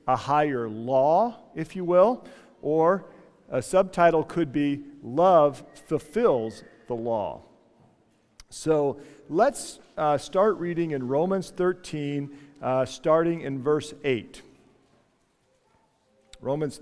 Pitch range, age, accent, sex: 135-180 Hz, 50-69, American, male